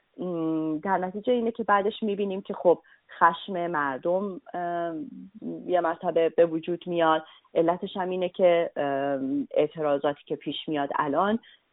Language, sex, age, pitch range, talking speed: English, female, 30-49, 150-195 Hz, 120 wpm